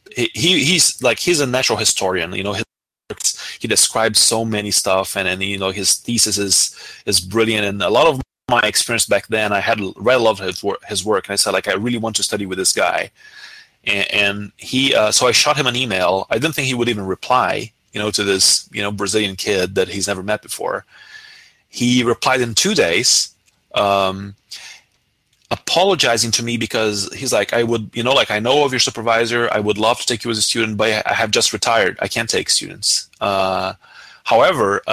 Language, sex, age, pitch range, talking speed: English, male, 30-49, 100-120 Hz, 220 wpm